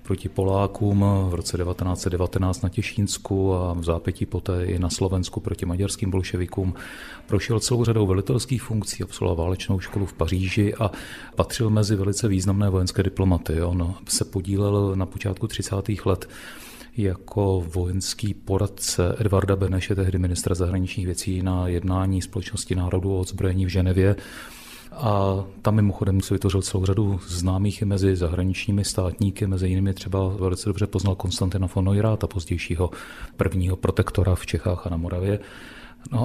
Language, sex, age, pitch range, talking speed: Czech, male, 40-59, 90-100 Hz, 145 wpm